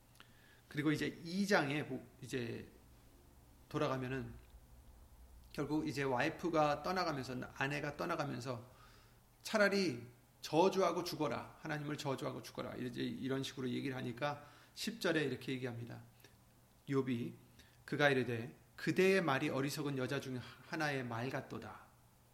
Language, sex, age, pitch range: Korean, male, 30-49, 125-180 Hz